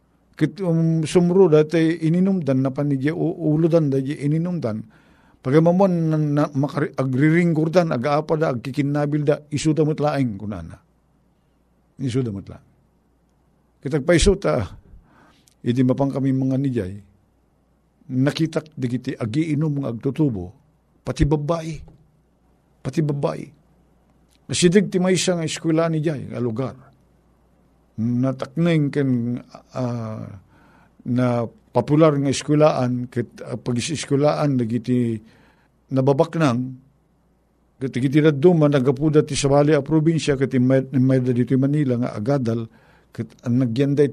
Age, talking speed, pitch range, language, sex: 50-69, 110 wpm, 125-155 Hz, Filipino, male